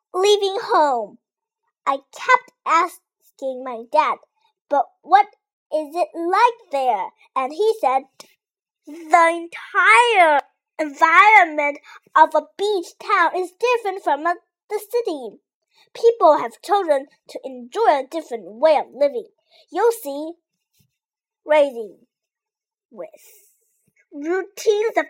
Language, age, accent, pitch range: Chinese, 30-49, American, 295-430 Hz